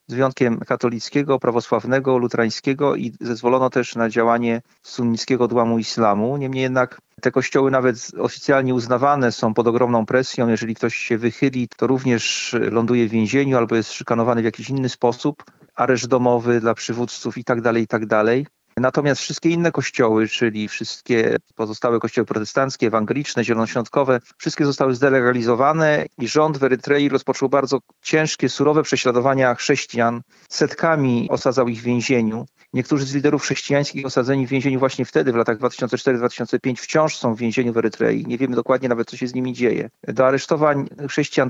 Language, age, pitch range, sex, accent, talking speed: Polish, 40-59, 120-140 Hz, male, native, 150 wpm